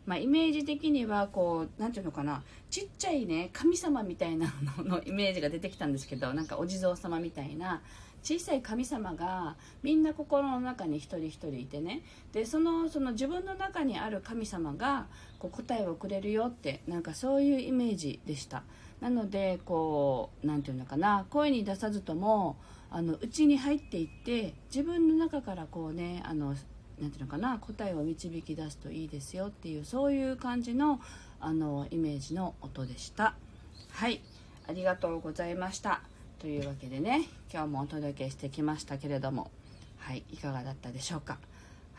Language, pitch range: Japanese, 145-215 Hz